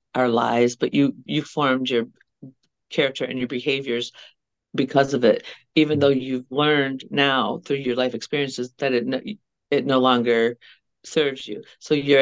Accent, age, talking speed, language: American, 50-69, 155 wpm, English